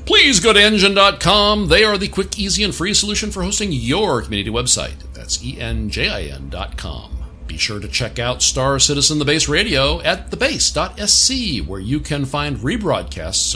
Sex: male